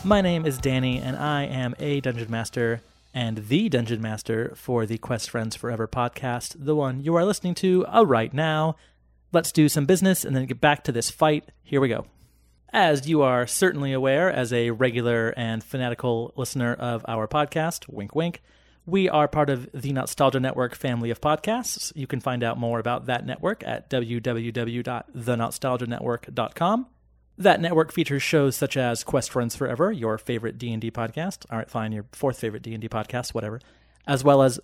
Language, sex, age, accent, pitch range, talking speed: English, male, 30-49, American, 115-150 Hz, 180 wpm